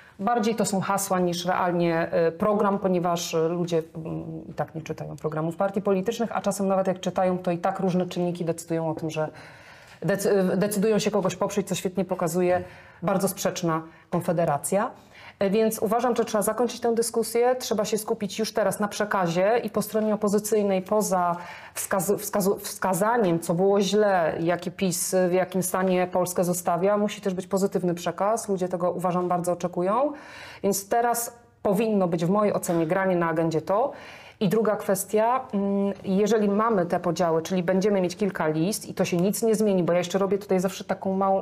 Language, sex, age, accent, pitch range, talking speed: Polish, female, 30-49, native, 180-205 Hz, 170 wpm